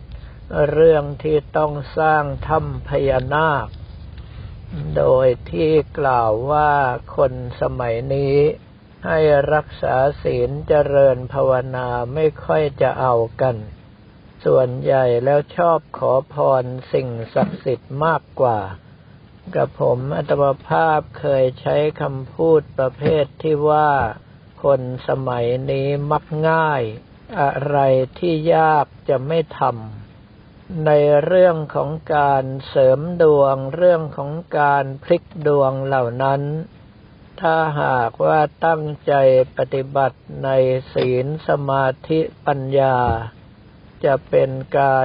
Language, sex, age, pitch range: Thai, male, 60-79, 130-150 Hz